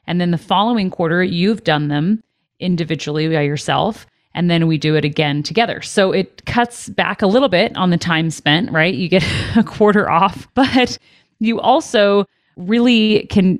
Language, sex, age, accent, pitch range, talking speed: English, female, 40-59, American, 155-200 Hz, 175 wpm